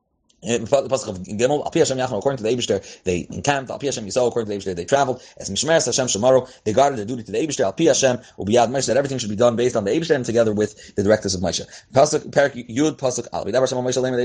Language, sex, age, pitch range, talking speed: English, male, 30-49, 125-160 Hz, 145 wpm